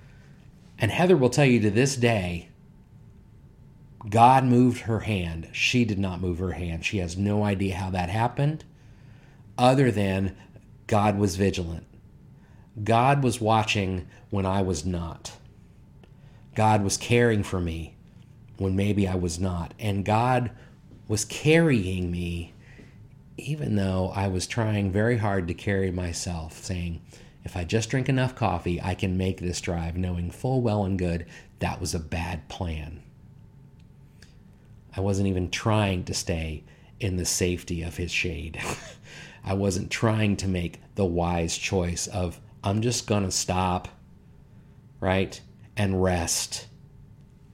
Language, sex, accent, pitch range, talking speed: English, male, American, 90-115 Hz, 145 wpm